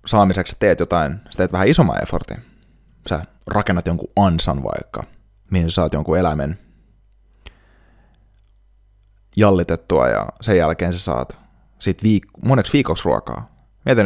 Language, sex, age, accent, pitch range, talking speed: Finnish, male, 30-49, native, 90-105 Hz, 120 wpm